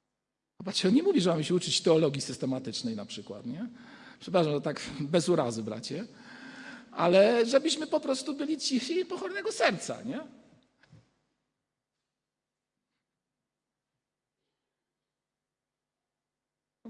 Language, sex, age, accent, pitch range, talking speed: Polish, male, 50-69, native, 160-250 Hz, 95 wpm